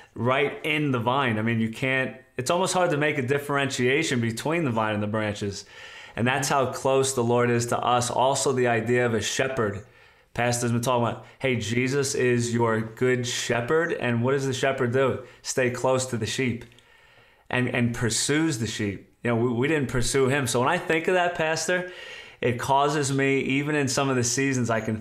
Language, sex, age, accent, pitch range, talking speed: English, male, 20-39, American, 120-140 Hz, 210 wpm